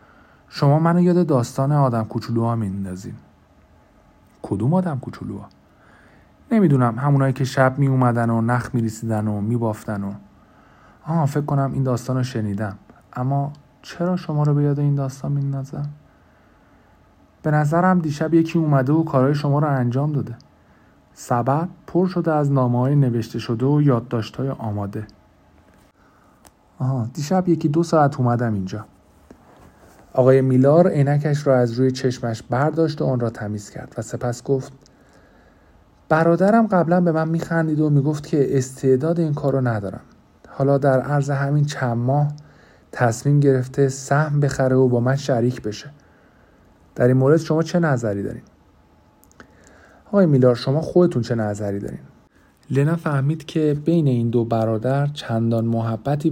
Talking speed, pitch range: 145 wpm, 115-150 Hz